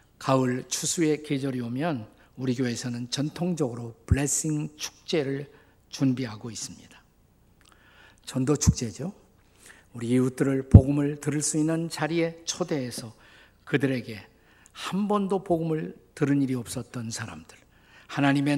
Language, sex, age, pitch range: Korean, male, 50-69, 125-165 Hz